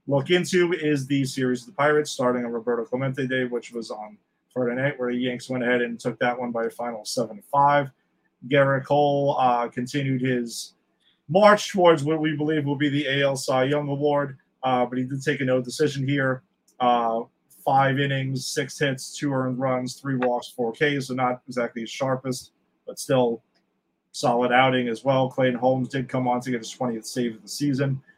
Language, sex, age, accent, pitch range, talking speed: English, male, 30-49, American, 125-140 Hz, 200 wpm